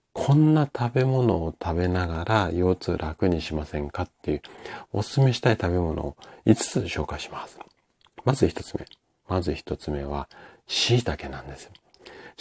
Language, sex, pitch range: Japanese, male, 75-110 Hz